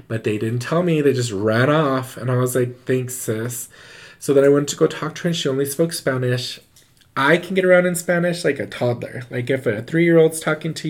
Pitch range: 115-145 Hz